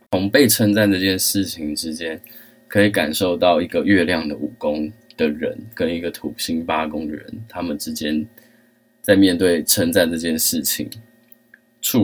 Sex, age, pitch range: male, 20-39, 85-115 Hz